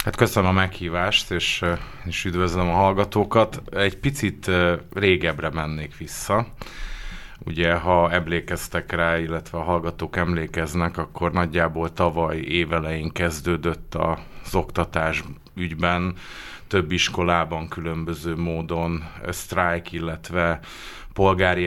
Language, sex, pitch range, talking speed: Hungarian, male, 85-95 Hz, 100 wpm